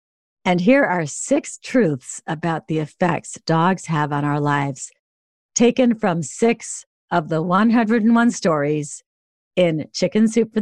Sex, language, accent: female, English, American